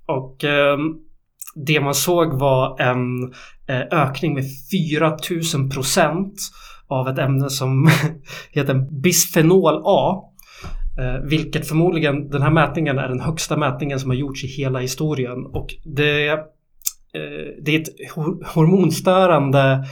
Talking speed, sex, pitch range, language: 110 wpm, male, 130-155 Hz, Swedish